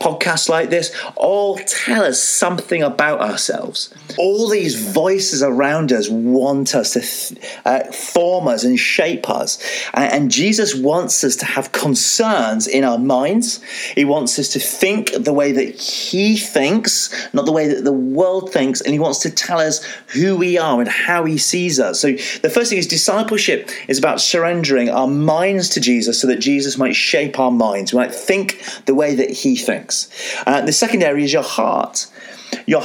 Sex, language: male, English